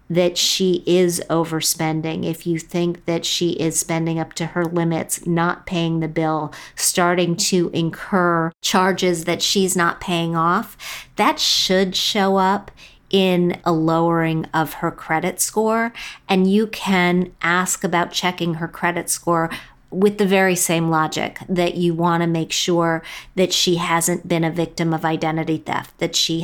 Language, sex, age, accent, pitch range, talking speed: English, female, 50-69, American, 165-185 Hz, 160 wpm